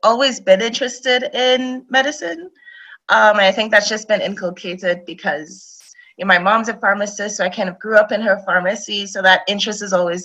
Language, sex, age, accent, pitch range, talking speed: English, female, 20-39, American, 175-215 Hz, 200 wpm